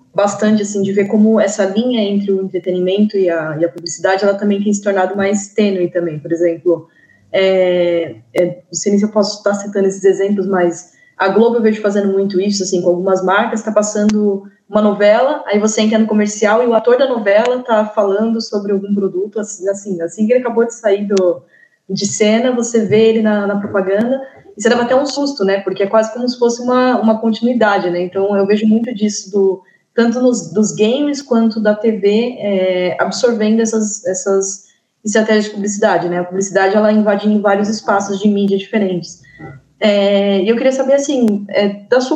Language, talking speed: Portuguese, 200 wpm